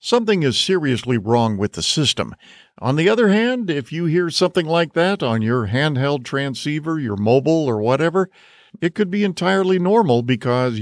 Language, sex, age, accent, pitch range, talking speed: English, male, 50-69, American, 110-155 Hz, 170 wpm